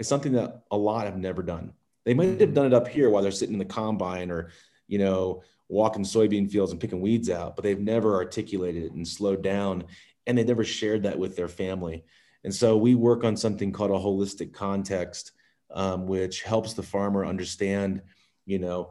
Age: 30-49